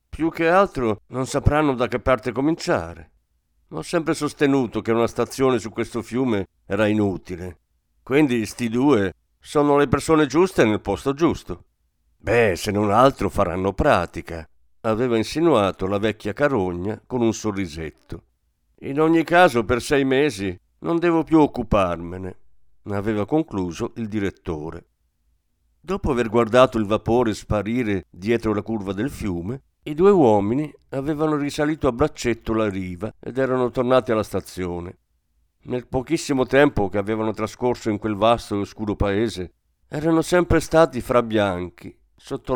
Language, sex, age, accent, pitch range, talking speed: Italian, male, 50-69, native, 95-135 Hz, 140 wpm